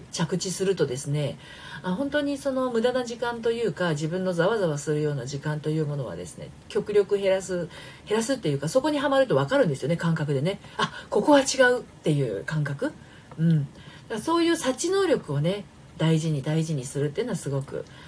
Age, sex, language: 40-59, female, Japanese